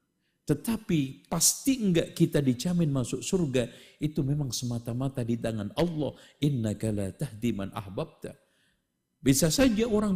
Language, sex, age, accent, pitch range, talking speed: Indonesian, male, 50-69, native, 115-165 Hz, 120 wpm